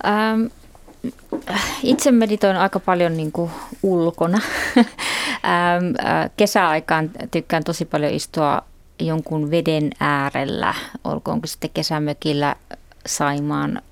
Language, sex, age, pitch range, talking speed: Finnish, female, 30-49, 145-175 Hz, 80 wpm